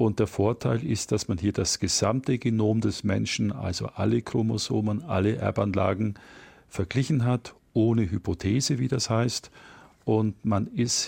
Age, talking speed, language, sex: 50-69, 145 wpm, German, male